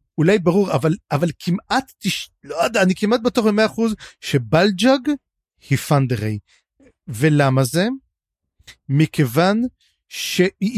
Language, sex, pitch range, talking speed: Hebrew, male, 140-190 Hz, 110 wpm